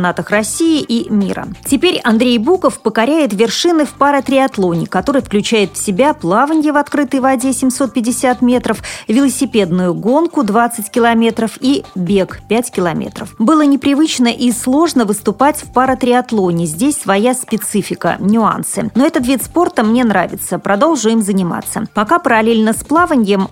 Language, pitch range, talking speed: Russian, 200-265 Hz, 135 wpm